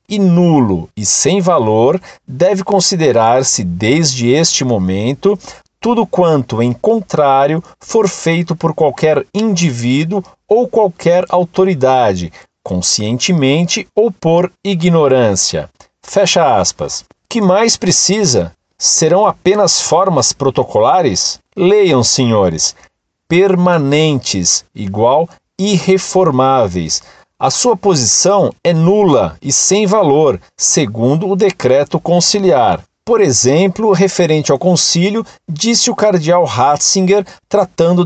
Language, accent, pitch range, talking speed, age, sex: Portuguese, Brazilian, 140-195 Hz, 100 wpm, 40-59, male